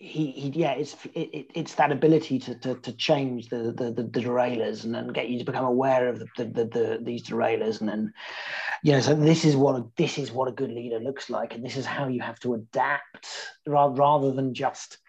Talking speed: 235 wpm